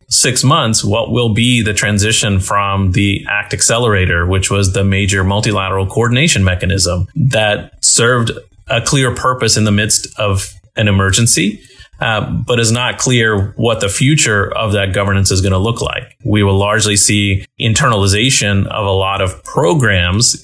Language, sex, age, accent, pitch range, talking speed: English, male, 30-49, American, 95-115 Hz, 160 wpm